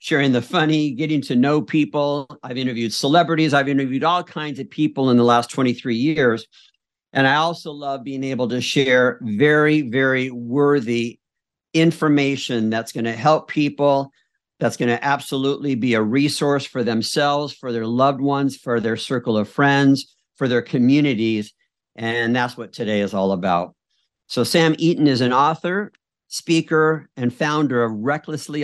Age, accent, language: 50-69, American, English